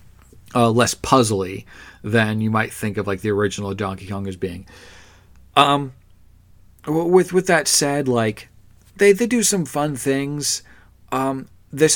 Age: 40-59